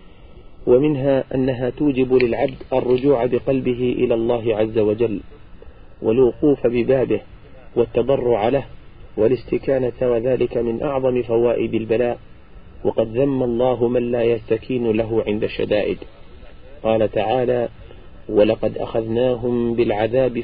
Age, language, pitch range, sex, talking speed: 40-59, Arabic, 110-125 Hz, male, 100 wpm